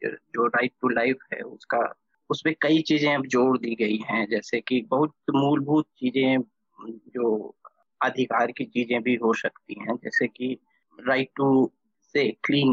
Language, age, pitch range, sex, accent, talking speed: Hindi, 20-39, 130-165 Hz, male, native, 155 wpm